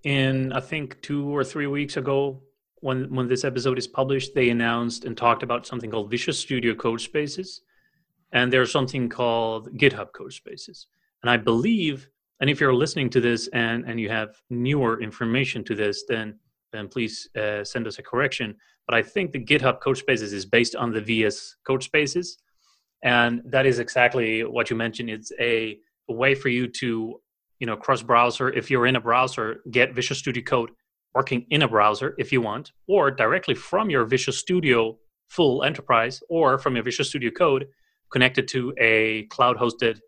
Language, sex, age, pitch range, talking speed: English, male, 30-49, 115-135 Hz, 185 wpm